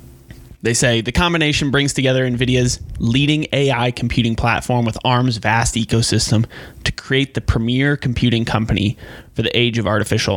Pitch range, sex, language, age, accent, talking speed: 105-130 Hz, male, English, 20-39, American, 150 wpm